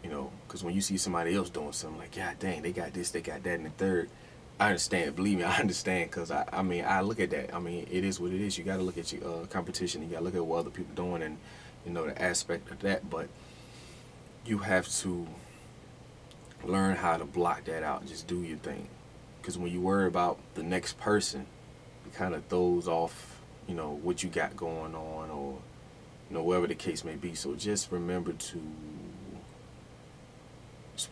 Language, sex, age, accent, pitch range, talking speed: English, male, 30-49, American, 85-100 Hz, 225 wpm